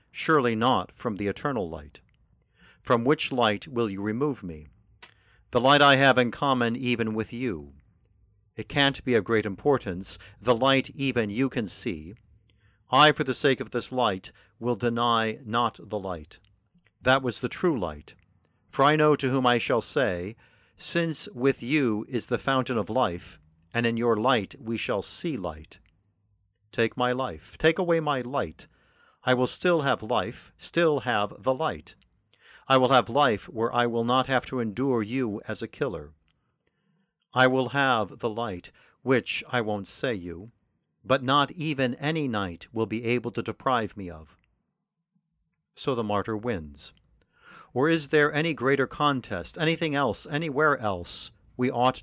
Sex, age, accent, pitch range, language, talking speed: male, 50-69, American, 105-135 Hz, English, 165 wpm